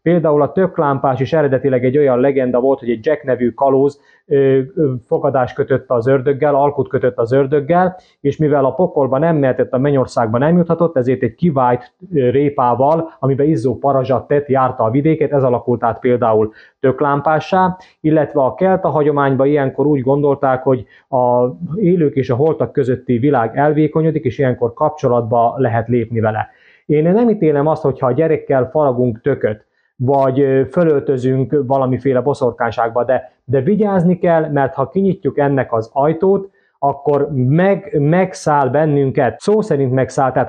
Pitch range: 130-155 Hz